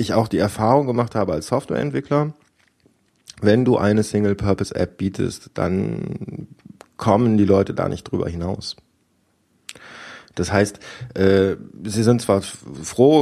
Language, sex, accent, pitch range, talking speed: German, male, German, 95-115 Hz, 125 wpm